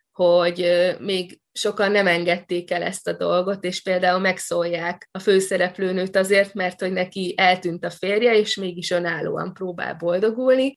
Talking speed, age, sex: 145 wpm, 20-39, female